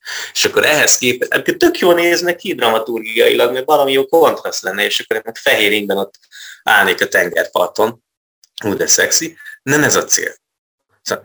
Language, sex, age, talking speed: Hungarian, male, 30-49, 165 wpm